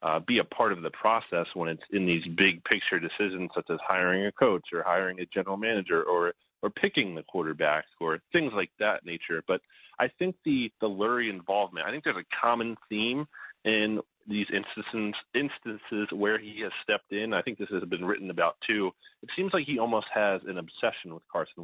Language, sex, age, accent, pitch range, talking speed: English, male, 30-49, American, 95-115 Hz, 205 wpm